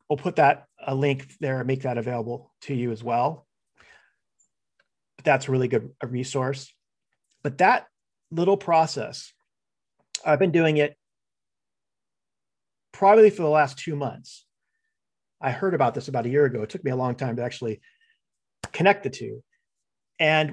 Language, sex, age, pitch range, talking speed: English, male, 40-59, 135-175 Hz, 160 wpm